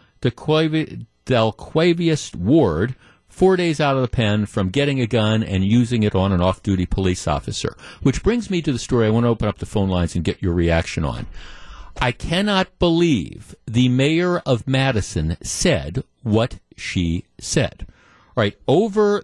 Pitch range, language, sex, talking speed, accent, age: 105-145 Hz, English, male, 175 wpm, American, 50-69